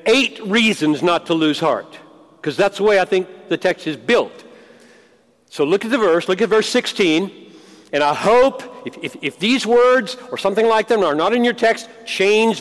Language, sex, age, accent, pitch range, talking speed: English, male, 50-69, American, 180-250 Hz, 205 wpm